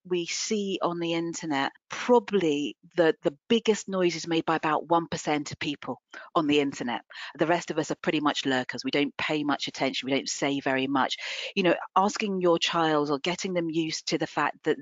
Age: 40-59